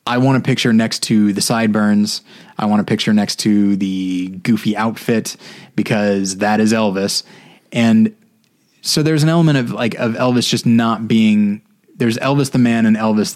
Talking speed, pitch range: 175 wpm, 110-155 Hz